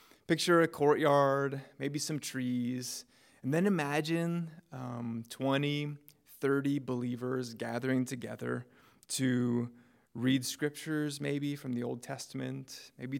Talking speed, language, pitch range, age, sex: 110 wpm, English, 120-145 Hz, 20-39, male